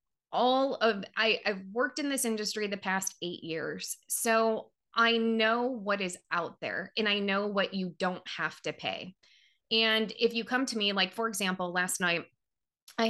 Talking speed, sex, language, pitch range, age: 185 wpm, female, English, 180-215 Hz, 20-39